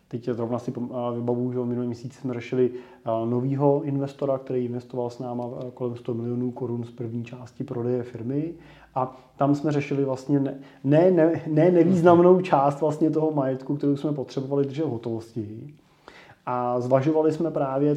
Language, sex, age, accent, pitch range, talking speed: Czech, male, 30-49, native, 125-145 Hz, 160 wpm